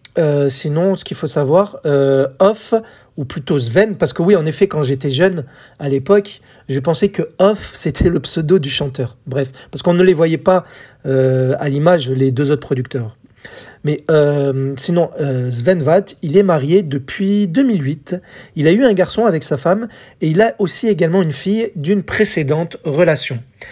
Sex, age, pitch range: male, 40-59, 140-190 Hz